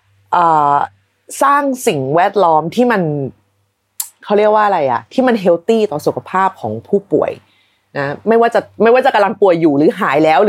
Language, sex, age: Thai, female, 30-49